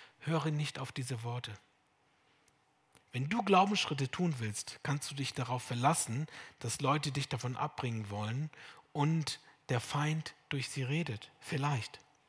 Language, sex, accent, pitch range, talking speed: German, male, German, 120-150 Hz, 135 wpm